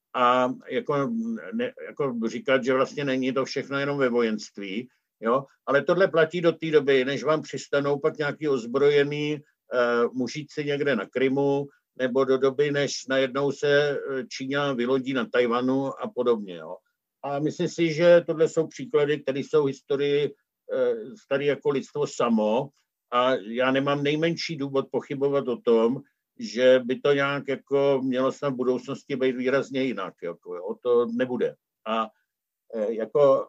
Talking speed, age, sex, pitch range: 150 wpm, 60-79, male, 130-150 Hz